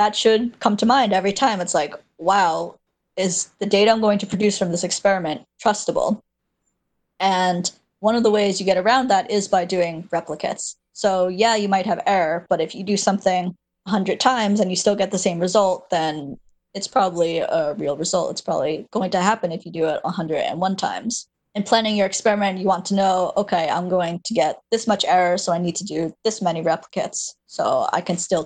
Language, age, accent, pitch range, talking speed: English, 20-39, American, 175-205 Hz, 210 wpm